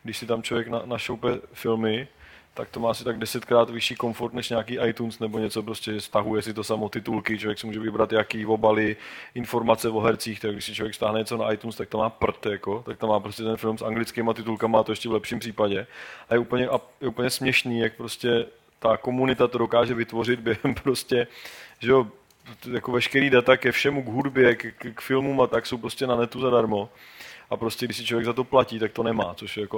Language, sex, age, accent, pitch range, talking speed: Czech, male, 20-39, native, 110-125 Hz, 230 wpm